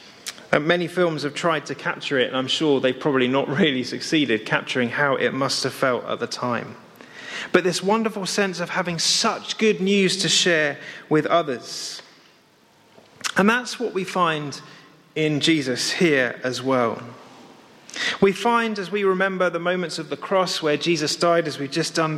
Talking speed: 175 wpm